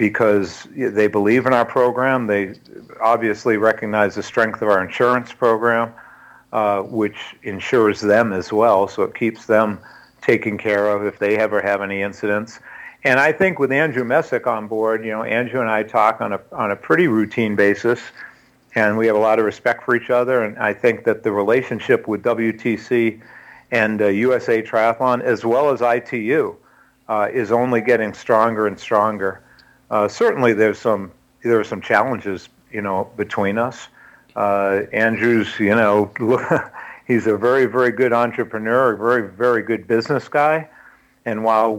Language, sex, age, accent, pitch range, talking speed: English, male, 50-69, American, 105-120 Hz, 170 wpm